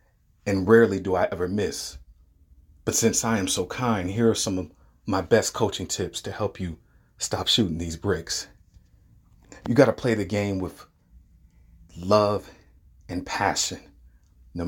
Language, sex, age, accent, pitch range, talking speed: English, male, 30-49, American, 80-105 Hz, 150 wpm